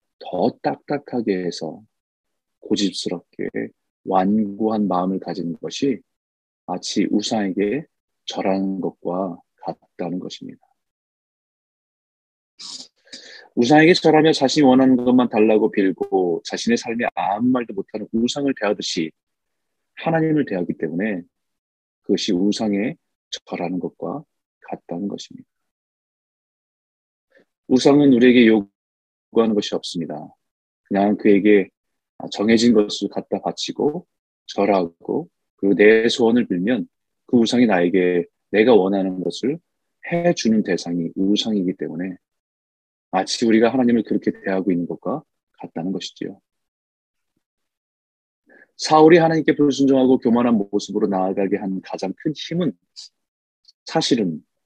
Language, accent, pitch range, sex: Korean, native, 95-125 Hz, male